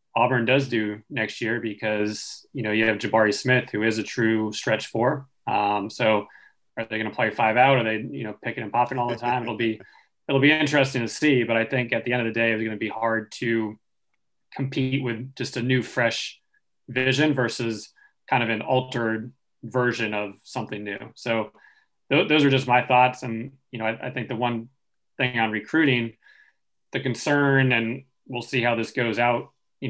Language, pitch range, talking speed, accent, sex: English, 110-130 Hz, 205 wpm, American, male